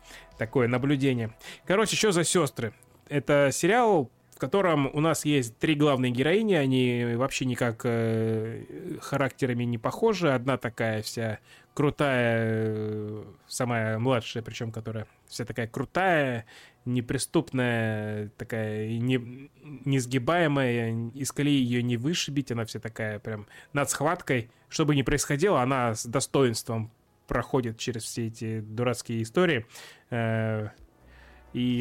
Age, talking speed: 20-39, 115 wpm